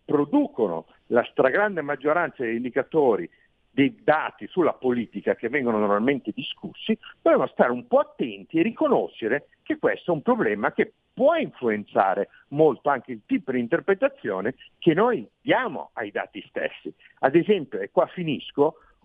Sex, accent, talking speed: male, native, 145 wpm